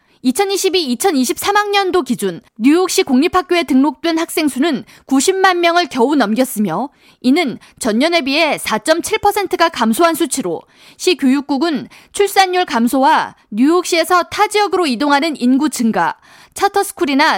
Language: Korean